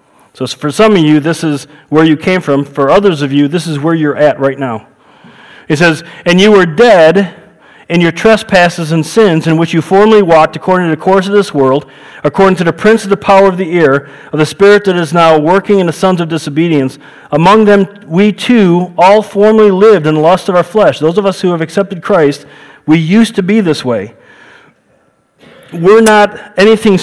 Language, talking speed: English, 215 wpm